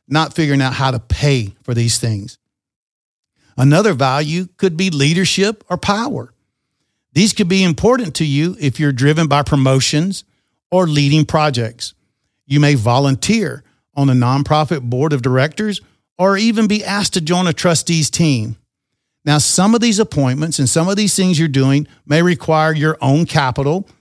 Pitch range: 125-165 Hz